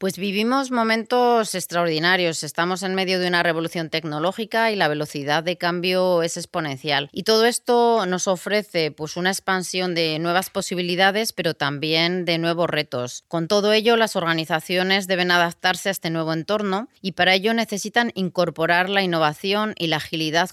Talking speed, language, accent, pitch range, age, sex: 160 wpm, Spanish, Spanish, 160-190 Hz, 30-49, female